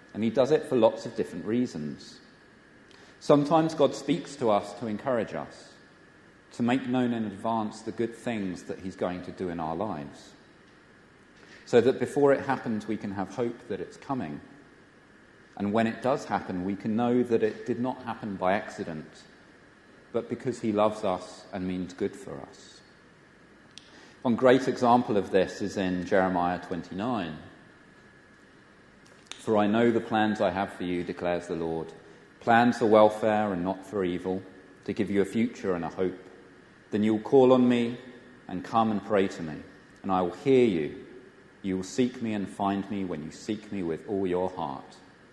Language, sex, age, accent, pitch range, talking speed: English, male, 40-59, British, 90-115 Hz, 185 wpm